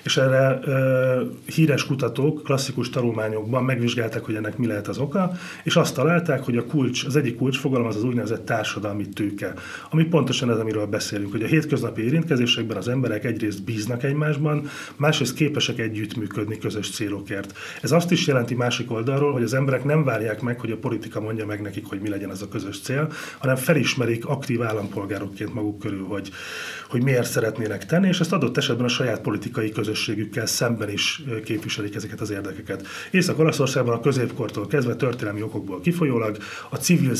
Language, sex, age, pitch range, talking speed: Hungarian, male, 30-49, 105-140 Hz, 175 wpm